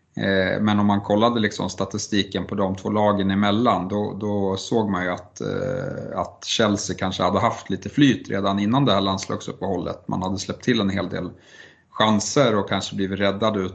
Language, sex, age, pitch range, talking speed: Swedish, male, 30-49, 95-105 Hz, 180 wpm